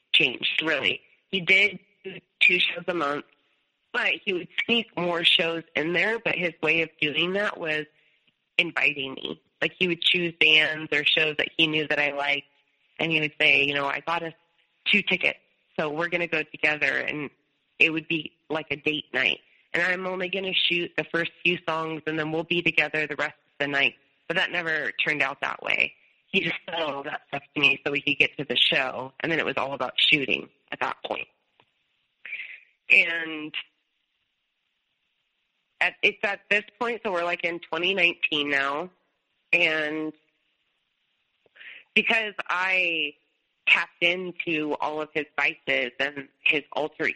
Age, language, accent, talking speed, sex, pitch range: 20-39, English, American, 175 wpm, female, 145-175 Hz